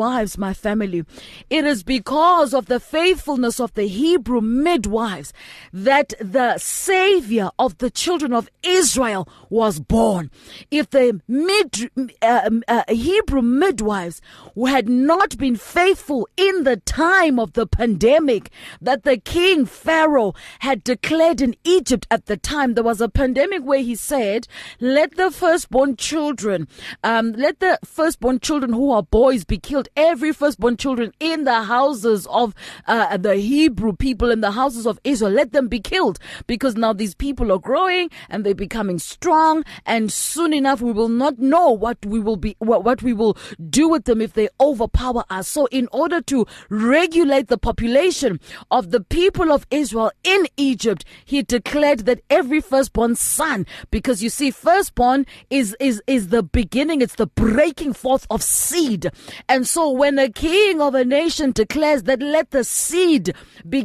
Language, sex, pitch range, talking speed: English, female, 225-305 Hz, 160 wpm